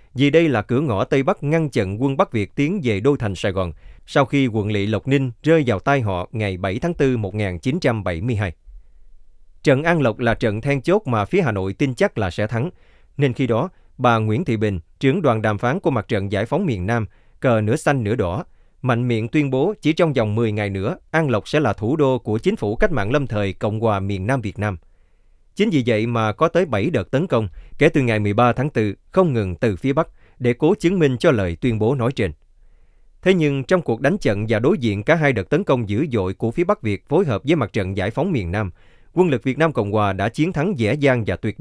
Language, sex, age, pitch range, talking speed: Vietnamese, male, 20-39, 105-145 Hz, 250 wpm